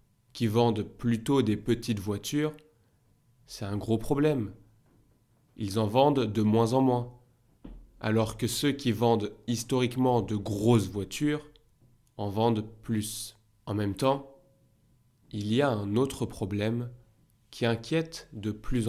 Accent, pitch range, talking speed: French, 110-130 Hz, 135 wpm